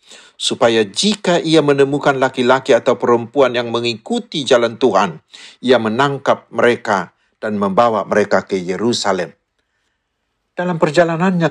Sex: male